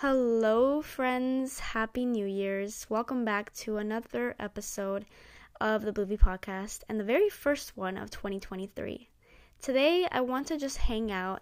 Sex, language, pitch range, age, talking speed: female, English, 205-255 Hz, 10-29, 145 wpm